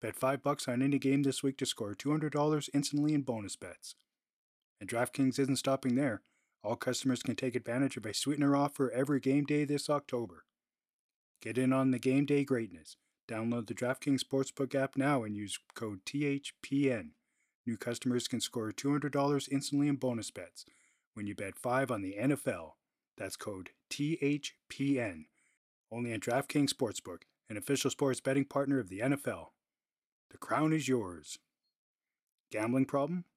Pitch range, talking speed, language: 120-140 Hz, 165 wpm, English